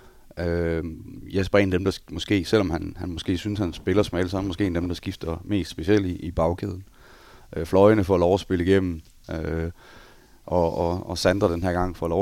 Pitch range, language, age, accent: 85-95 Hz, Danish, 30-49, native